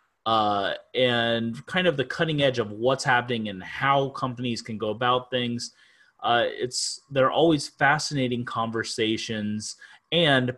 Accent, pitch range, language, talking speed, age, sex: American, 115-145 Hz, English, 135 wpm, 30-49, male